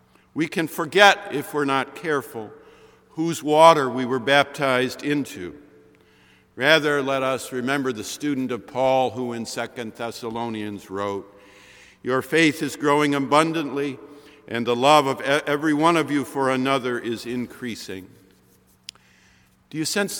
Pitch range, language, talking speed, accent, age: 120-165 Hz, English, 135 wpm, American, 50-69